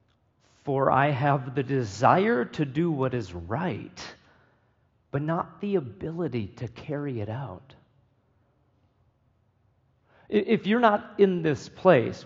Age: 40-59